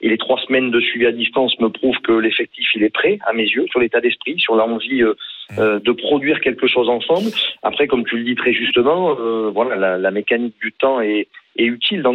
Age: 40-59